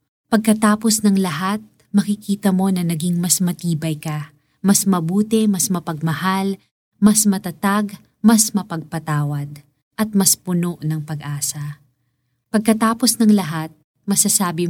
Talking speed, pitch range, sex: 110 wpm, 150-200 Hz, female